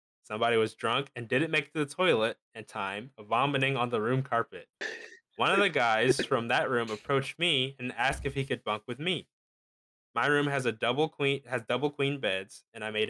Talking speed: 215 wpm